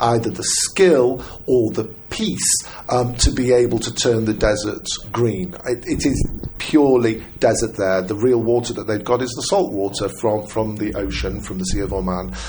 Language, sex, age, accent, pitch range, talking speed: English, male, 50-69, British, 100-120 Hz, 190 wpm